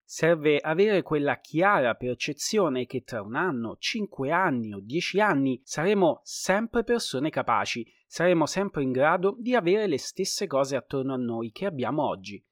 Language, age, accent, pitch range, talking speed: Italian, 30-49, native, 125-195 Hz, 160 wpm